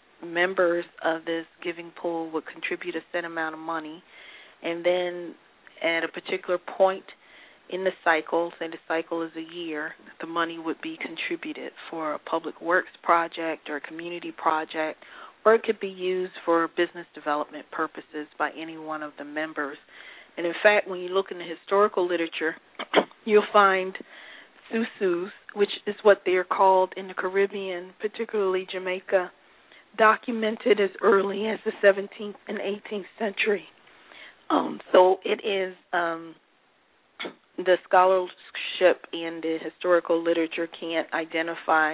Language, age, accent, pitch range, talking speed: English, 40-59, American, 165-190 Hz, 145 wpm